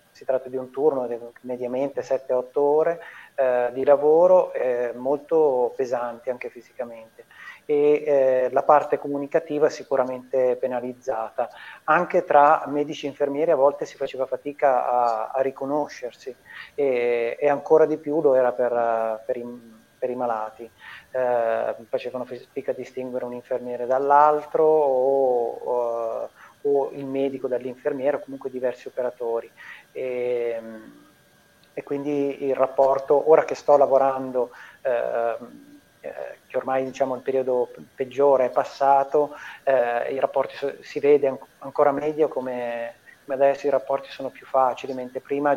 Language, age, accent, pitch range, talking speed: Italian, 30-49, native, 125-145 Hz, 135 wpm